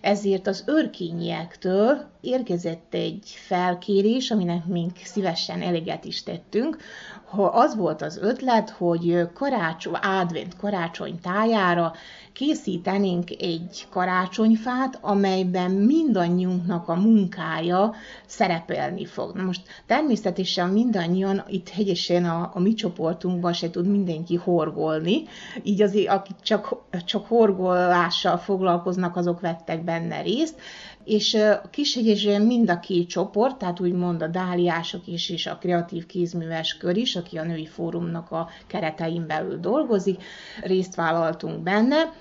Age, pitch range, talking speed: 30-49, 175-205 Hz, 120 wpm